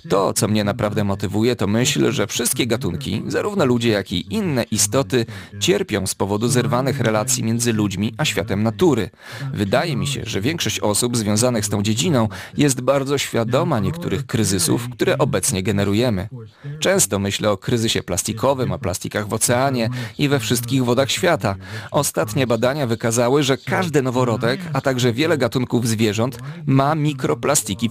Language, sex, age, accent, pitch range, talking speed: Polish, male, 40-59, native, 105-135 Hz, 155 wpm